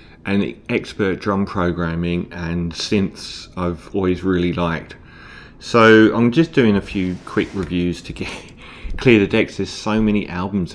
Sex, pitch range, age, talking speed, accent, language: male, 85-100 Hz, 30-49, 145 wpm, British, English